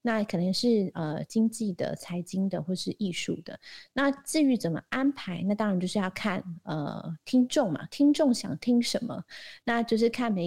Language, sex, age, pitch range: Chinese, female, 30-49, 180-235 Hz